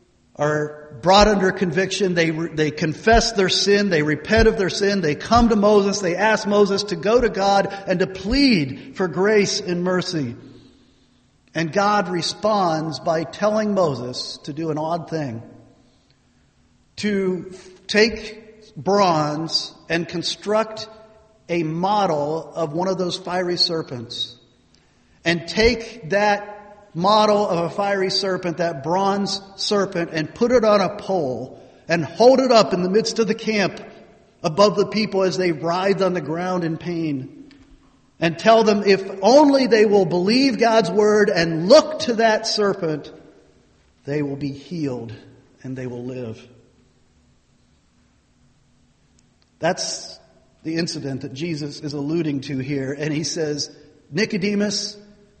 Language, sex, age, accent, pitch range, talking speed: English, male, 50-69, American, 155-205 Hz, 140 wpm